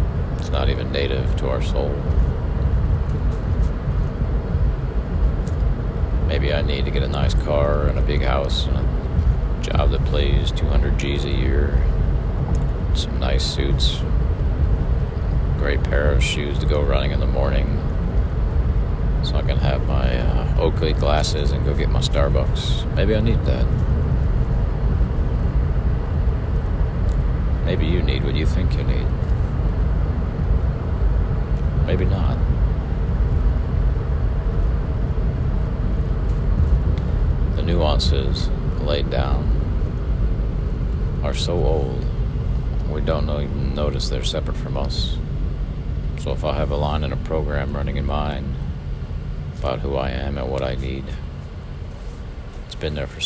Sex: male